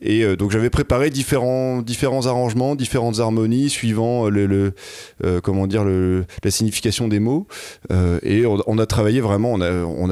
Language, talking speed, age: French, 170 wpm, 20-39